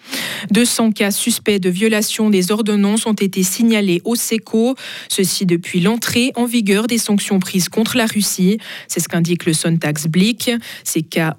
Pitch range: 175-225 Hz